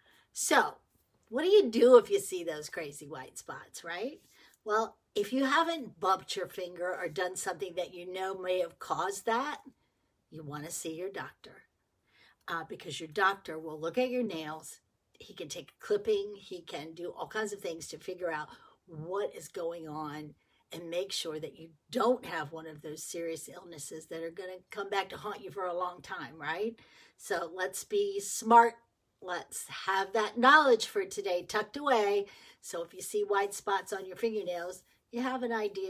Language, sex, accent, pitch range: English, female, American, 175-230 Hz